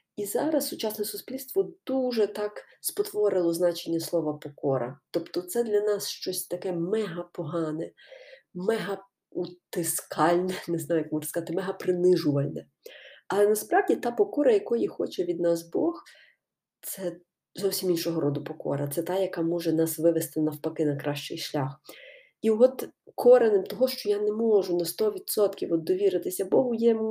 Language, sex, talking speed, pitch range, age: Ukrainian, female, 135 wpm, 165-235 Hz, 30-49